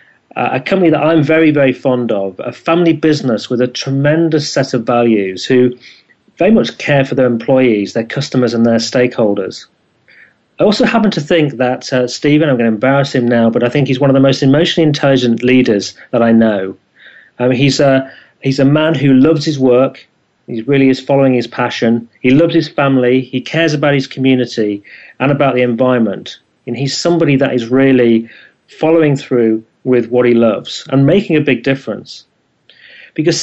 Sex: male